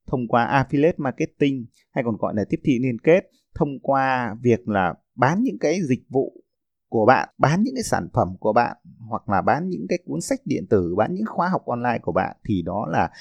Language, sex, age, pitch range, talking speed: Vietnamese, male, 20-39, 115-165 Hz, 225 wpm